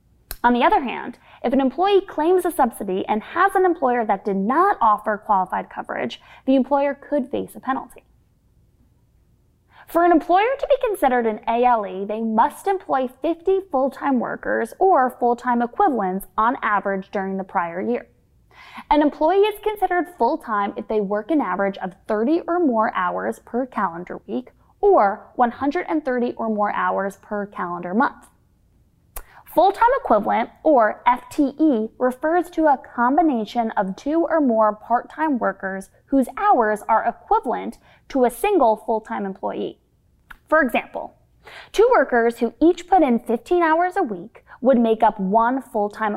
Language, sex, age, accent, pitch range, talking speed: English, female, 10-29, American, 215-320 Hz, 150 wpm